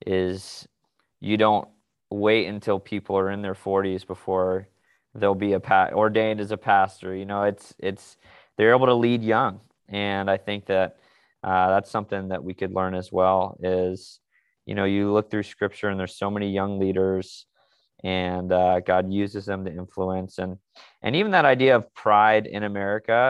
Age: 20-39